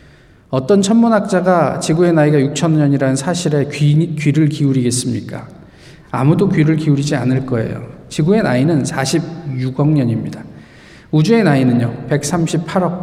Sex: male